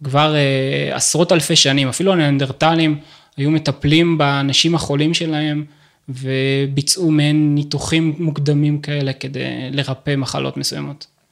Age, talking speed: 20-39, 110 wpm